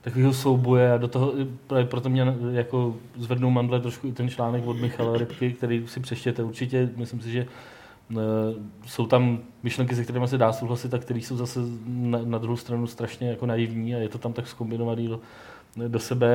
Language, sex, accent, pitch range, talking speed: Czech, male, native, 115-125 Hz, 195 wpm